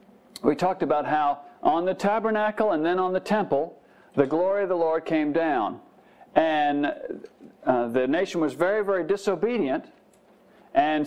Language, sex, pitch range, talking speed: English, male, 150-210 Hz, 150 wpm